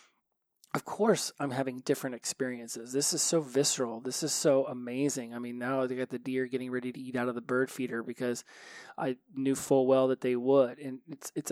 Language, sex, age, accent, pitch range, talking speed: English, male, 20-39, American, 125-145 Hz, 215 wpm